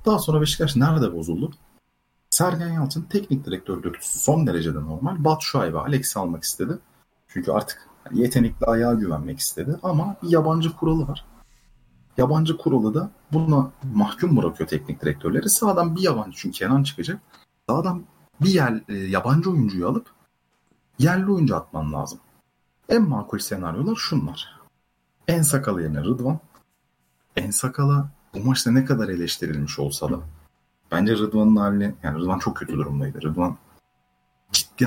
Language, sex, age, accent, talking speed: Turkish, male, 40-59, native, 140 wpm